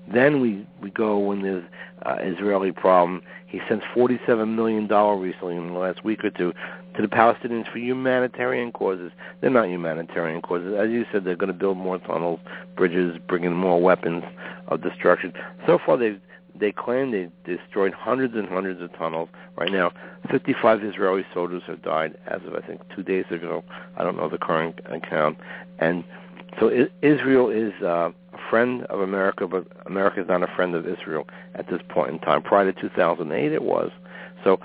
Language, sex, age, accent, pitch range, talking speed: English, male, 60-79, American, 90-110 Hz, 185 wpm